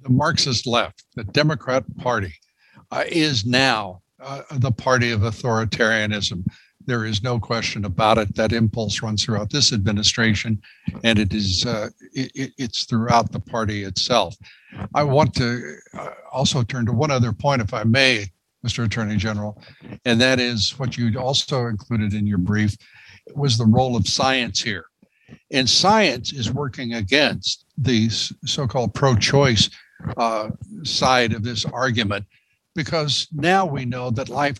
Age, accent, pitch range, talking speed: 60-79, American, 110-140 Hz, 150 wpm